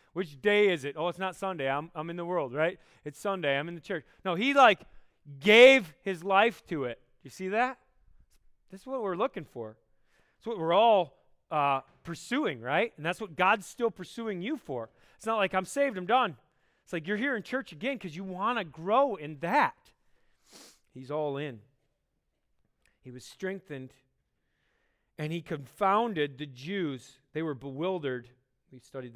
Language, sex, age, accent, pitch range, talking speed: English, male, 30-49, American, 135-190 Hz, 185 wpm